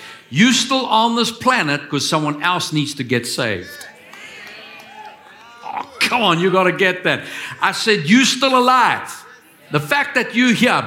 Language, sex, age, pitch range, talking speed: English, male, 60-79, 130-195 Hz, 165 wpm